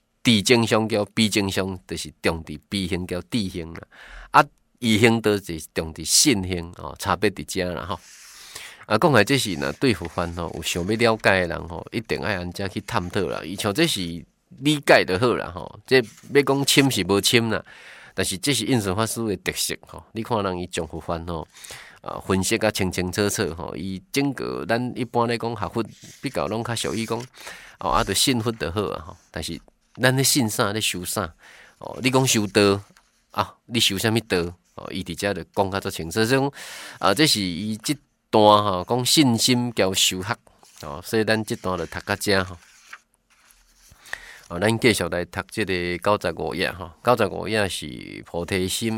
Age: 20-39